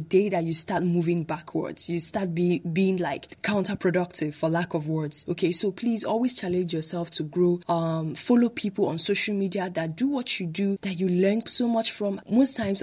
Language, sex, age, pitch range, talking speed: English, female, 10-29, 170-200 Hz, 195 wpm